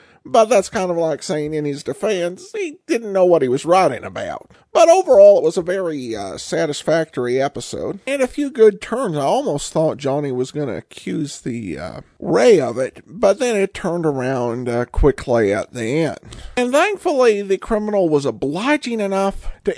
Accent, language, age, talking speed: American, English, 50-69, 190 wpm